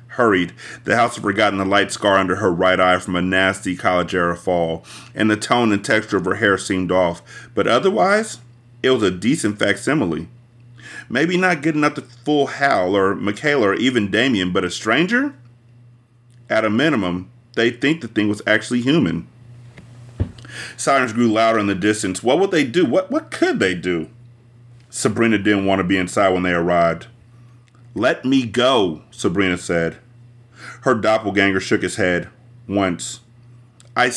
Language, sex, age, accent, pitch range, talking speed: English, male, 30-49, American, 95-120 Hz, 170 wpm